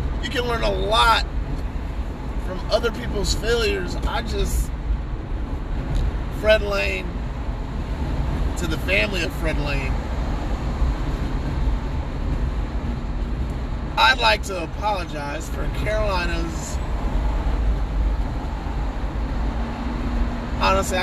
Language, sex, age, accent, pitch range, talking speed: English, male, 30-49, American, 70-75 Hz, 75 wpm